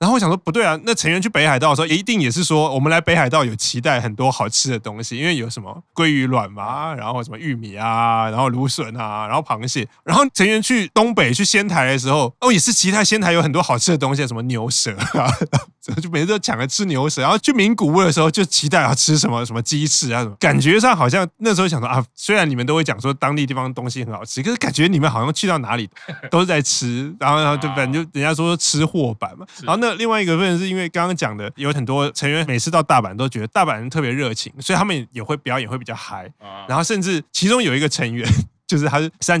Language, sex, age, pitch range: Chinese, male, 20-39, 125-170 Hz